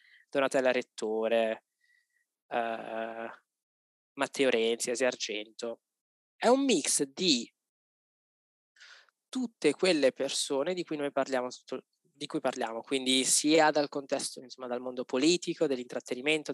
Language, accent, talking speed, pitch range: Italian, native, 105 wpm, 135-165 Hz